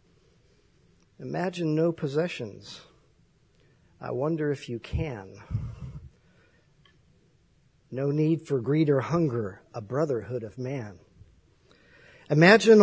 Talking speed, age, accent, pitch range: 90 wpm, 50-69, American, 150-185 Hz